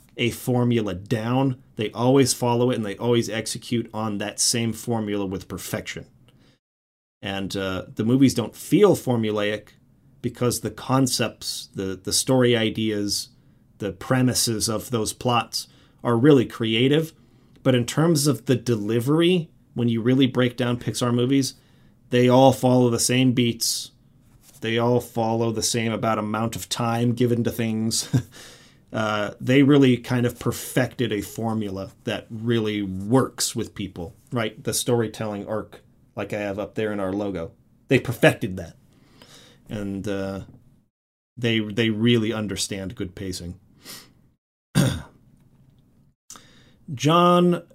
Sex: male